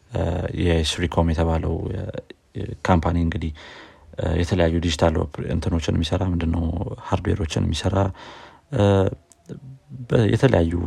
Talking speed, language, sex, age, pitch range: 70 wpm, Amharic, male, 30-49, 85-100 Hz